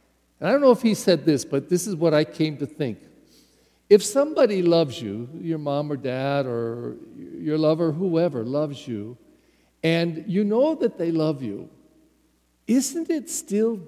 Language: English